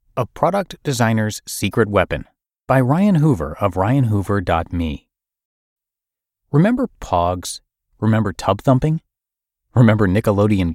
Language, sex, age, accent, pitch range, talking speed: English, male, 30-49, American, 95-135 Hz, 95 wpm